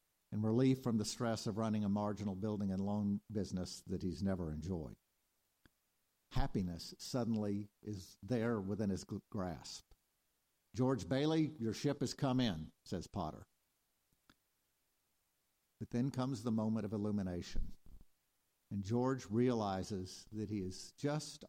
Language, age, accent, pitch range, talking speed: English, 50-69, American, 100-115 Hz, 130 wpm